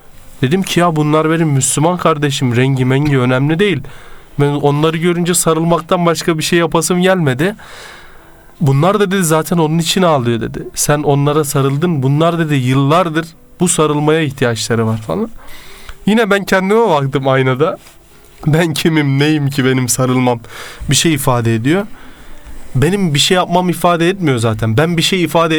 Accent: native